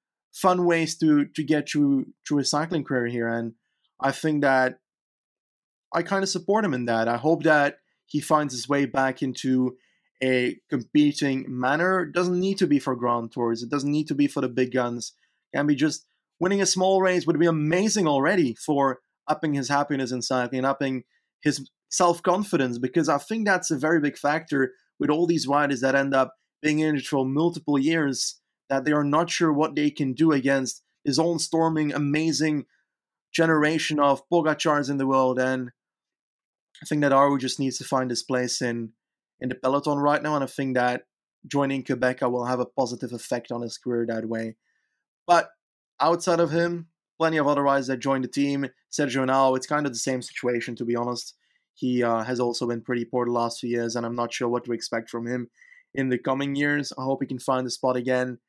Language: English